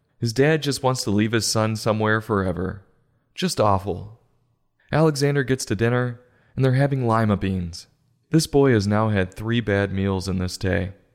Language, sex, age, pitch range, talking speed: English, male, 20-39, 100-130 Hz, 170 wpm